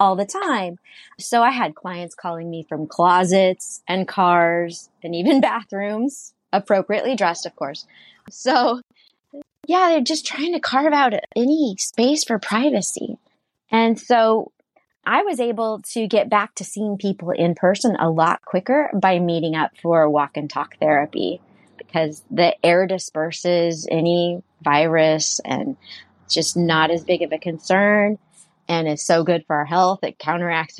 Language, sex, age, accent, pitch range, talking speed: English, female, 20-39, American, 170-230 Hz, 155 wpm